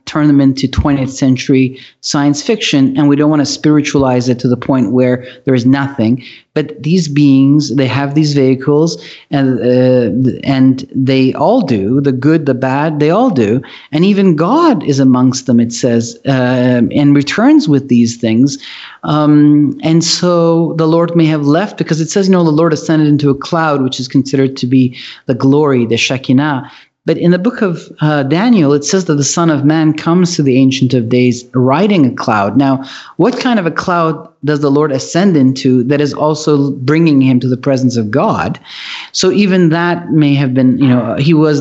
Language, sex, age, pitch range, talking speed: English, male, 40-59, 130-160 Hz, 200 wpm